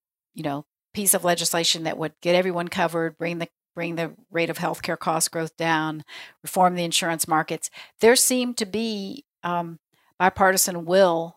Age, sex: 50-69, female